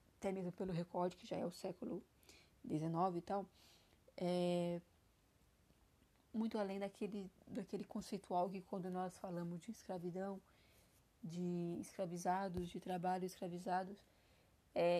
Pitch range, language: 185-215 Hz, Portuguese